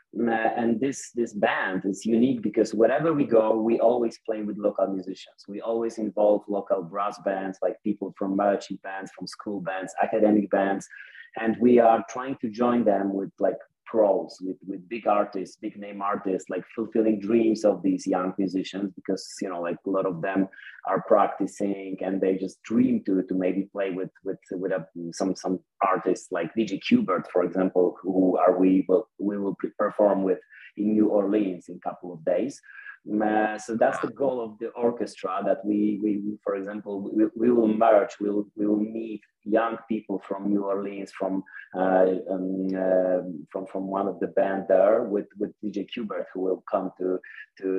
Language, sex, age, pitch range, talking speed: English, male, 30-49, 95-110 Hz, 185 wpm